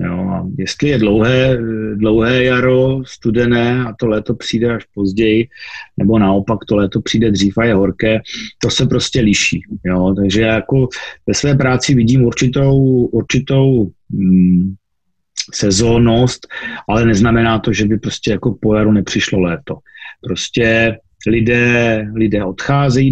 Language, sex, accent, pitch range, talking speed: Czech, male, native, 105-125 Hz, 130 wpm